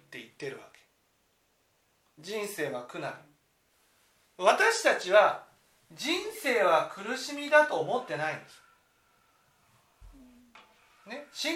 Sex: male